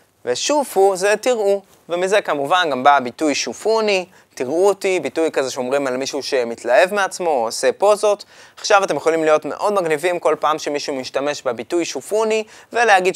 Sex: male